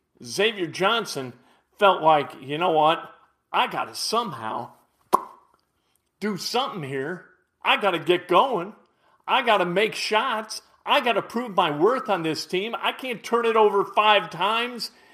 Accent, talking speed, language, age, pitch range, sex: American, 160 wpm, English, 40-59, 175-230 Hz, male